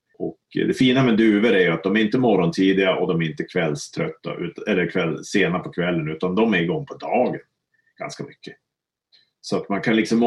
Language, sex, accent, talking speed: Swedish, male, Norwegian, 200 wpm